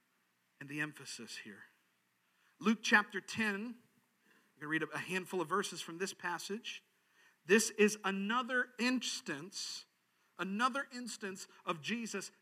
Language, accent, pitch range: English, American, 165-220 Hz